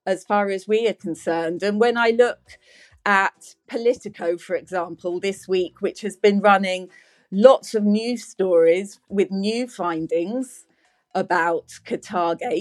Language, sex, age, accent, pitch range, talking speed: English, female, 40-59, British, 185-230 Hz, 140 wpm